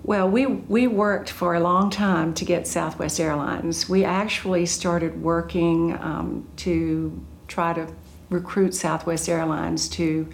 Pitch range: 165-180 Hz